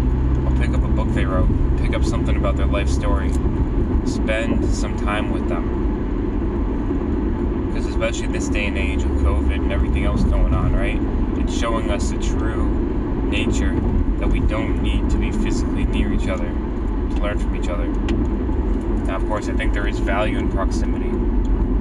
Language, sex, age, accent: English, male, 20-39, American